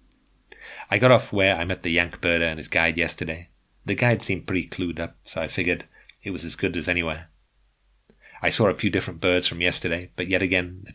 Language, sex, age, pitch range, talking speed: English, male, 30-49, 85-95 Hz, 220 wpm